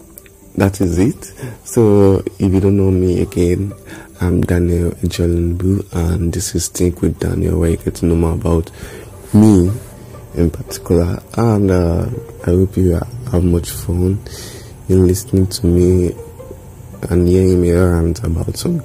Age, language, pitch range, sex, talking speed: 30-49, English, 90-115 Hz, male, 145 wpm